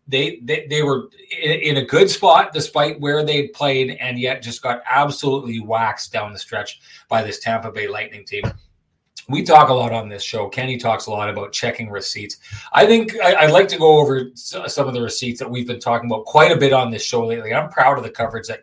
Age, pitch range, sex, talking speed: 30-49, 125-155 Hz, male, 230 wpm